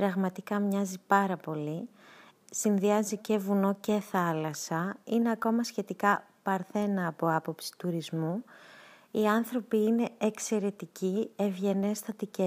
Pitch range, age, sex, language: 175-220 Hz, 20-39, female, Greek